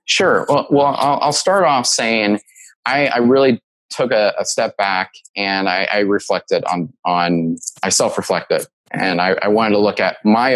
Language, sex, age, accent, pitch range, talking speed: English, male, 30-49, American, 100-120 Hz, 175 wpm